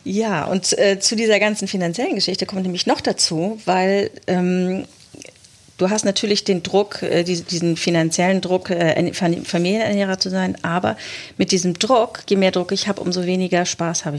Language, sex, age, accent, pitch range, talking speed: German, female, 40-59, German, 170-195 Hz, 170 wpm